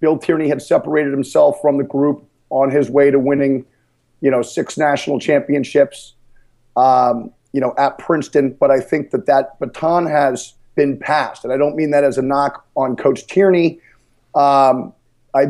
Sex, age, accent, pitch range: male, 40-59, American, 130-155 Hz